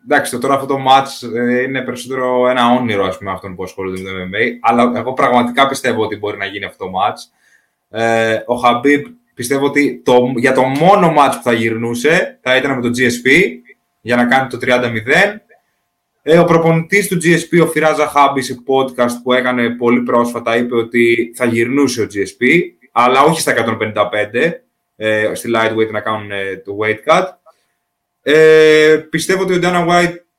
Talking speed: 180 wpm